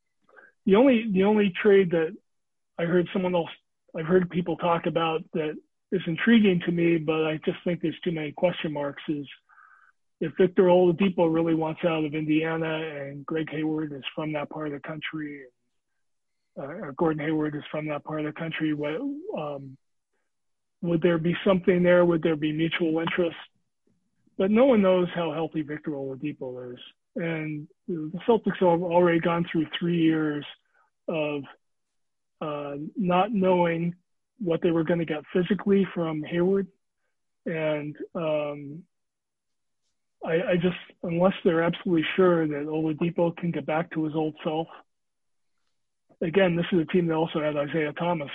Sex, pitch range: male, 155-180 Hz